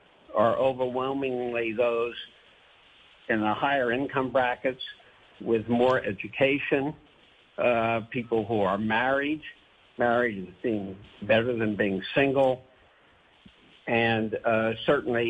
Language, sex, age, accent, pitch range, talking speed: Spanish, male, 60-79, American, 110-130 Hz, 100 wpm